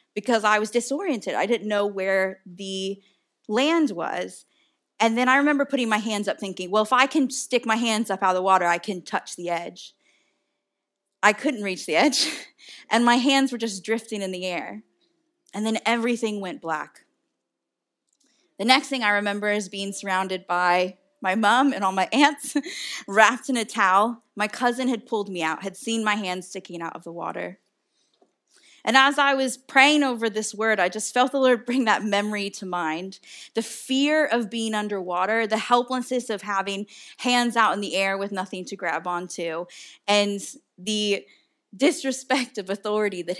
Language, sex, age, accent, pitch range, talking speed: English, female, 20-39, American, 195-260 Hz, 185 wpm